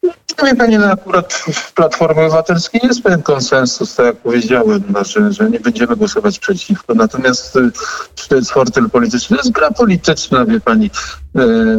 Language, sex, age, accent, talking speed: Polish, male, 50-69, native, 165 wpm